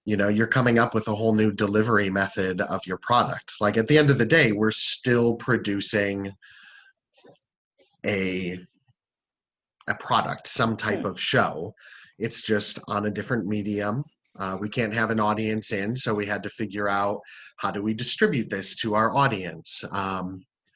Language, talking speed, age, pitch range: English, 170 wpm, 30-49, 100-125 Hz